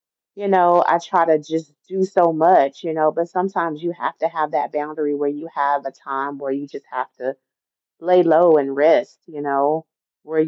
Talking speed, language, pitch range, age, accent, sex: 205 wpm, English, 145-175 Hz, 30-49, American, female